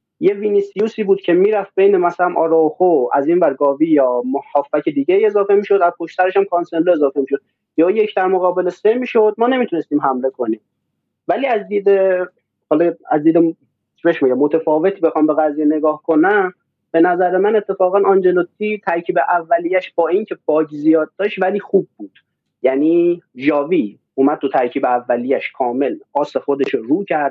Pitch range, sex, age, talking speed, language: 145-200 Hz, male, 30-49, 155 wpm, Persian